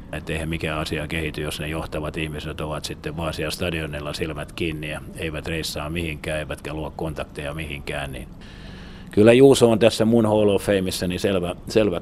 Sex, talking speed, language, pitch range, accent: male, 160 wpm, Finnish, 80-95 Hz, native